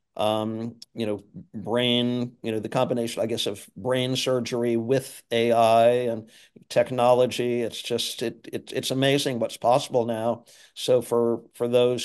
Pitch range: 115-125 Hz